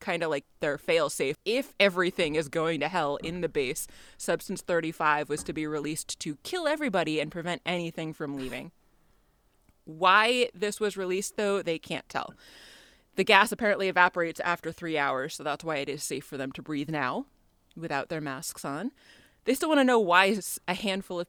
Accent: American